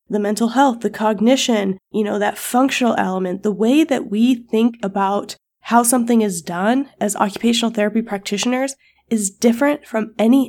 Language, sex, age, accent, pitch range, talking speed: English, female, 20-39, American, 195-240 Hz, 160 wpm